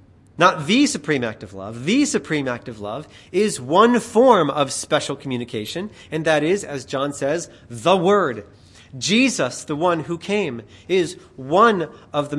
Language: English